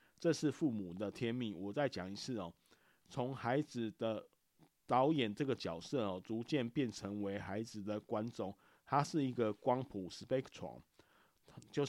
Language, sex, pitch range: Chinese, male, 110-135 Hz